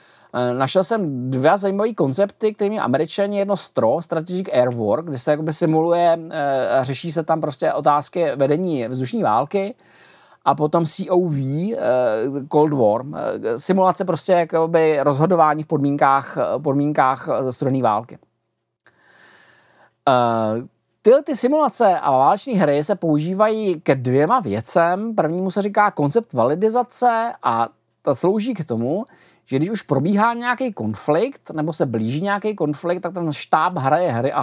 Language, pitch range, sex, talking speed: Czech, 140-195 Hz, male, 130 wpm